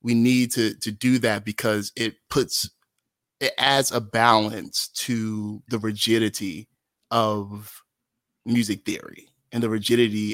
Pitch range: 105-115 Hz